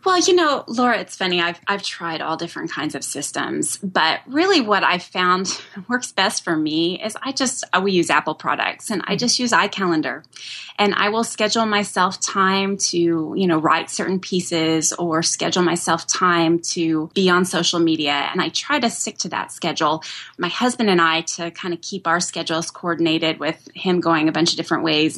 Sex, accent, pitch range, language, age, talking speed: female, American, 165-200 Hz, English, 20-39, 200 wpm